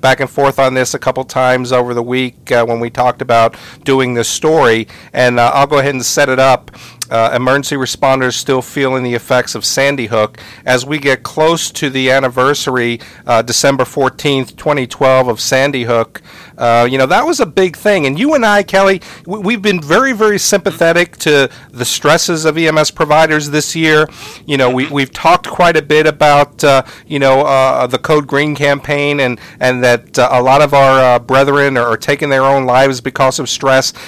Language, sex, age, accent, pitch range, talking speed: English, male, 50-69, American, 125-150 Hz, 200 wpm